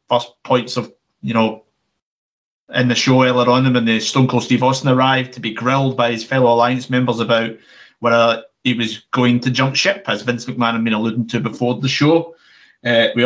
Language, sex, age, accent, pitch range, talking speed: English, male, 30-49, British, 115-135 Hz, 205 wpm